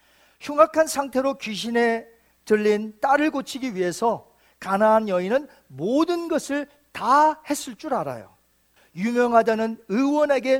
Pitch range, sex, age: 200-275 Hz, male, 40-59